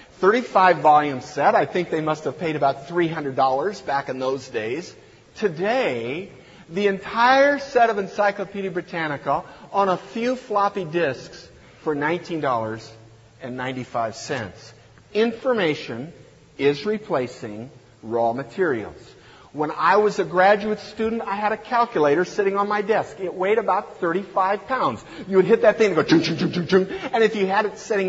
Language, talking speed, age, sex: English, 140 wpm, 50-69, male